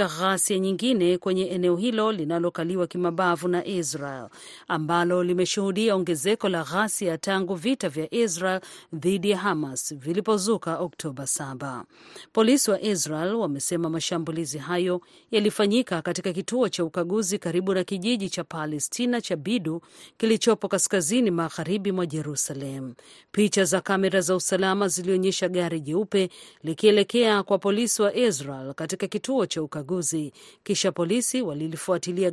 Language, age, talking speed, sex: Swahili, 40-59, 125 wpm, female